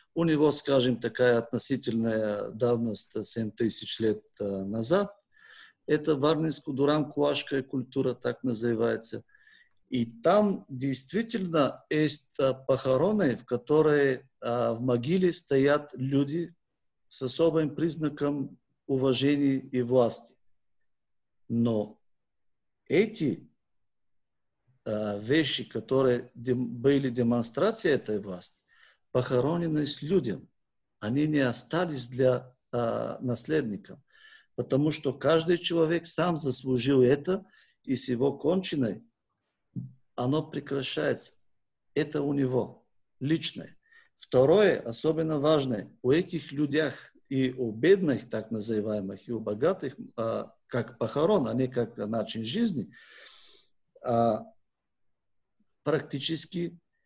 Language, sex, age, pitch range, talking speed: Russian, male, 50-69, 115-155 Hz, 95 wpm